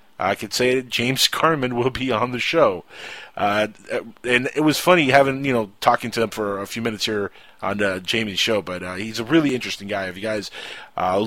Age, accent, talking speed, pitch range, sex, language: 30-49, American, 225 wpm, 95-125 Hz, male, English